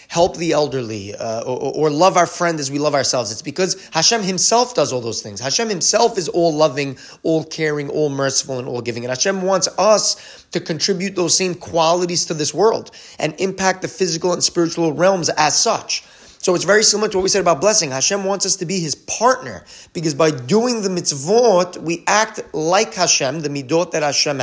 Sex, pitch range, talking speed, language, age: male, 140-185 Hz, 205 wpm, English, 30-49